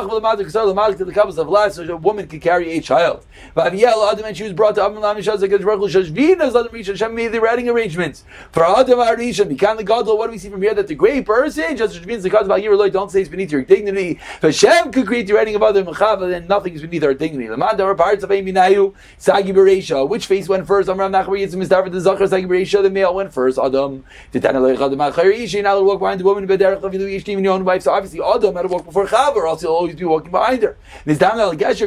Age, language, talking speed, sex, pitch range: 30-49, English, 275 wpm, male, 190-230 Hz